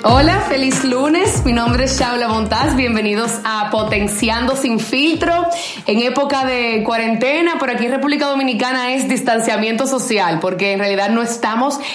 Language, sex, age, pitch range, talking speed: Spanish, female, 30-49, 230-280 Hz, 150 wpm